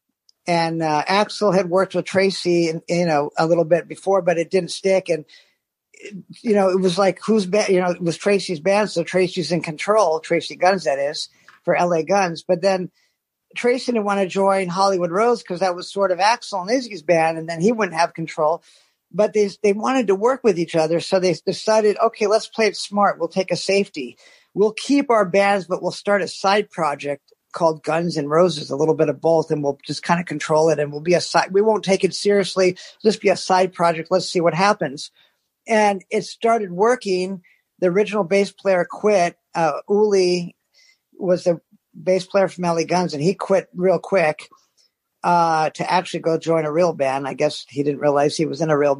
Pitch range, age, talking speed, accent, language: 165-200 Hz, 50-69, 210 wpm, American, English